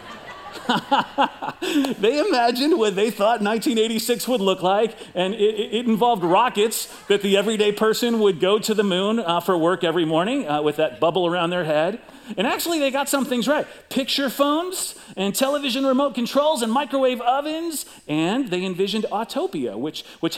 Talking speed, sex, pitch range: 170 wpm, male, 185-275 Hz